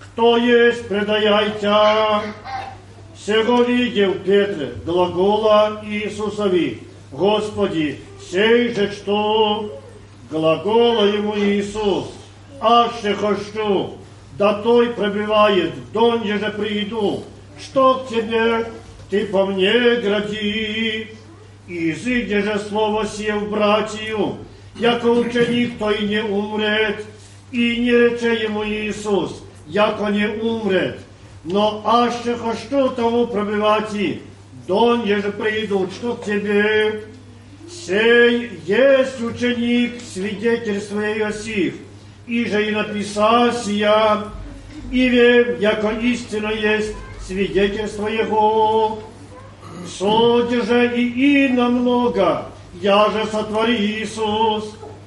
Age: 40-59